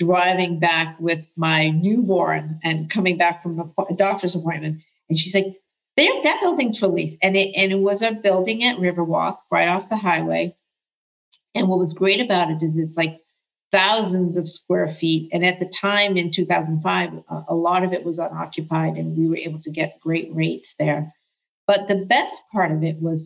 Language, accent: English, American